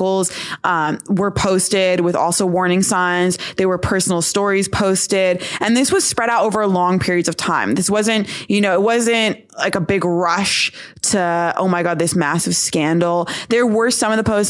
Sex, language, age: female, English, 20-39